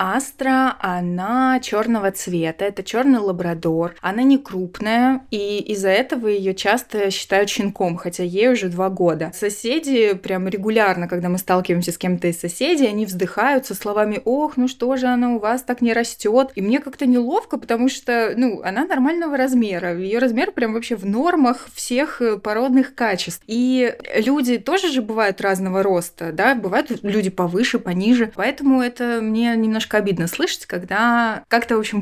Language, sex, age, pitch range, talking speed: Russian, female, 20-39, 190-240 Hz, 160 wpm